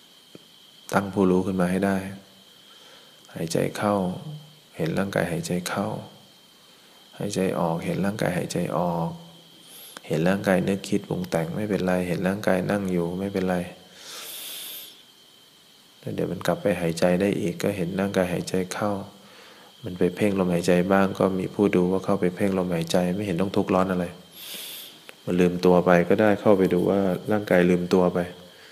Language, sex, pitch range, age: English, male, 90-100 Hz, 20-39